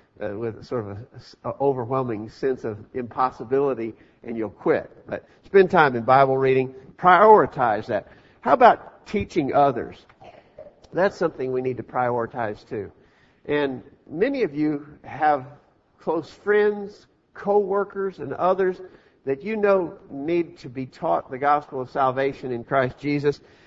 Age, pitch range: 50-69, 120-160 Hz